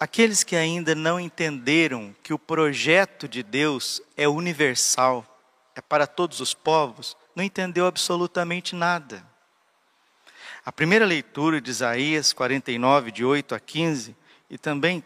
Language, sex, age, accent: Portuguese, male, 50-69, Brazilian